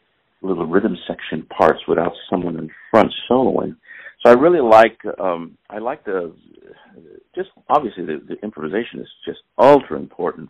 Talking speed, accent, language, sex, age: 150 wpm, American, English, male, 50-69